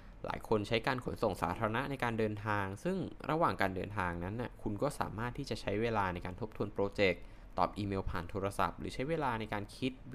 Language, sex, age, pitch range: Thai, male, 20-39, 95-120 Hz